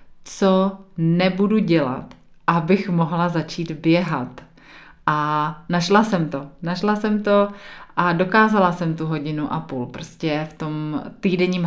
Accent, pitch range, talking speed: native, 155-190 Hz, 130 wpm